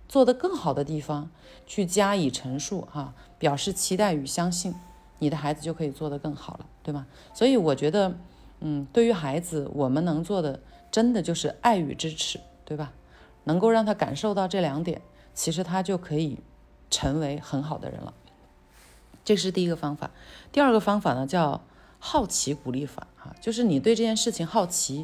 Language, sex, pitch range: Chinese, female, 150-215 Hz